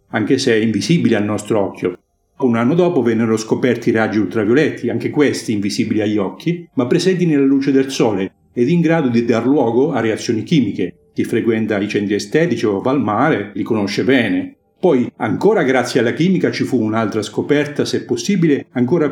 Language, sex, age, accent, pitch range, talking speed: Italian, male, 50-69, native, 115-150 Hz, 185 wpm